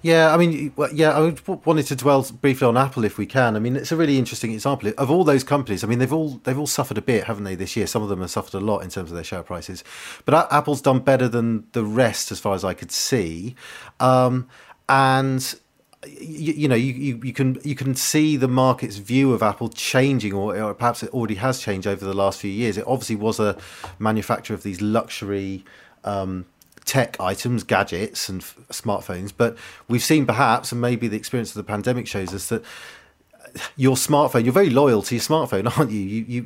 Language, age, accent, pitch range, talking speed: English, 40-59, British, 105-130 Hz, 225 wpm